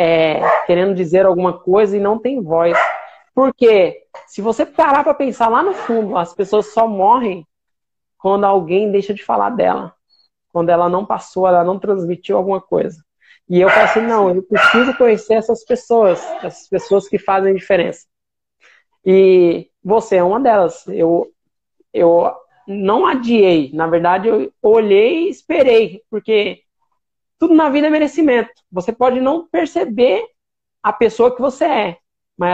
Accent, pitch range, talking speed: Brazilian, 185-235 Hz, 150 wpm